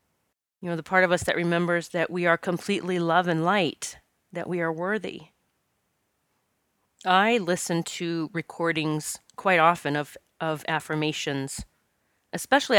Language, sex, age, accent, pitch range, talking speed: English, female, 30-49, American, 165-190 Hz, 135 wpm